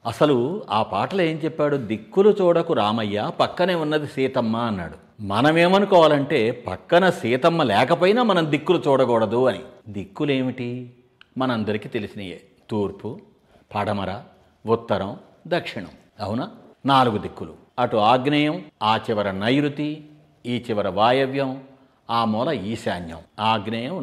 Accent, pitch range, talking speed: Indian, 115-160 Hz, 100 wpm